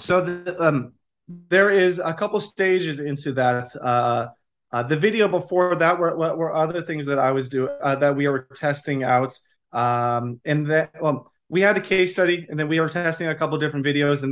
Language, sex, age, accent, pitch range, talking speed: English, male, 30-49, American, 130-160 Hz, 210 wpm